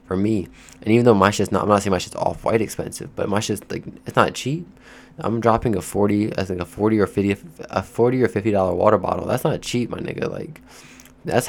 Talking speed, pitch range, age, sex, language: 225 wpm, 85-100 Hz, 20-39, male, English